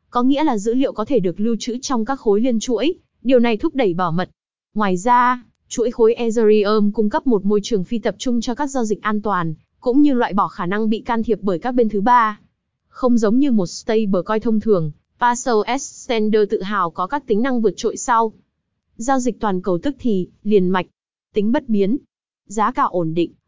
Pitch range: 200-245 Hz